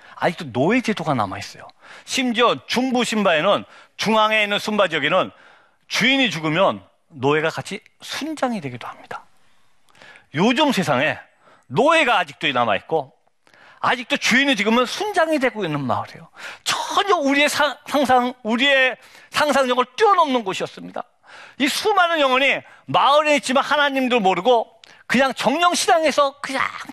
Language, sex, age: Korean, male, 40-59